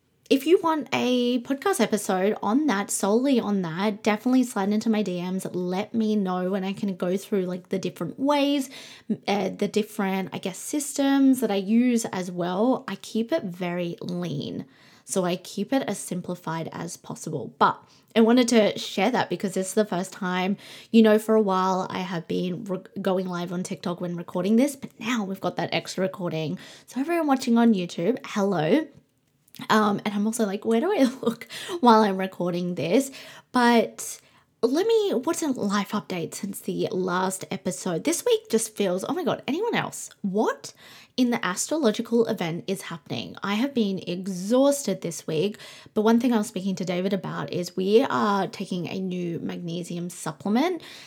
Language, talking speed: English, 185 wpm